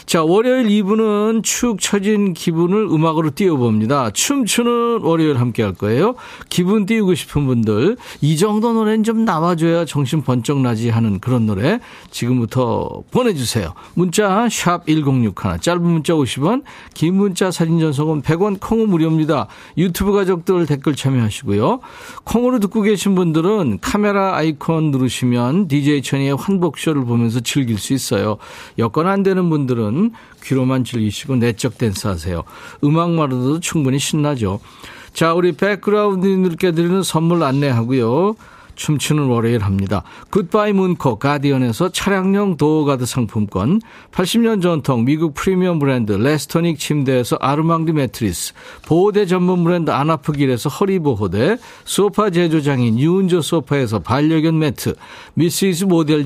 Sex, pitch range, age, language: male, 130-190 Hz, 40-59, Korean